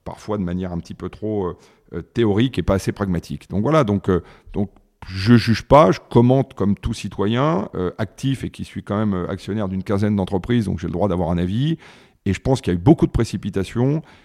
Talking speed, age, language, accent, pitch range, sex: 230 wpm, 40-59, French, French, 95-115 Hz, male